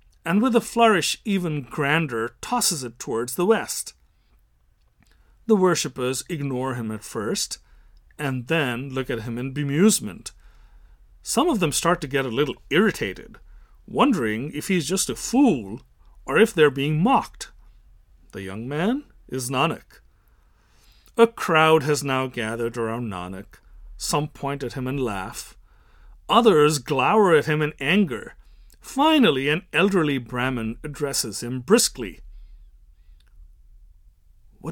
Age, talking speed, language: 40-59, 130 wpm, English